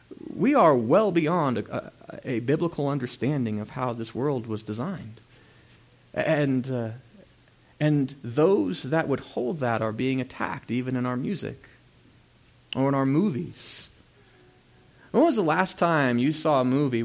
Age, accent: 40-59, American